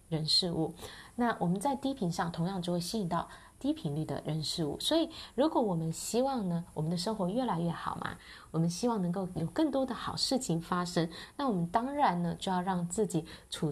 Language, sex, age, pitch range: Chinese, female, 20-39, 160-215 Hz